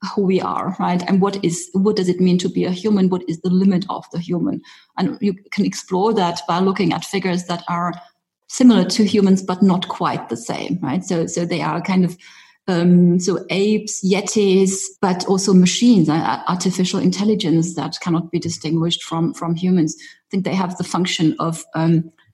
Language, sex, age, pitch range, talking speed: English, female, 30-49, 165-195 Hz, 195 wpm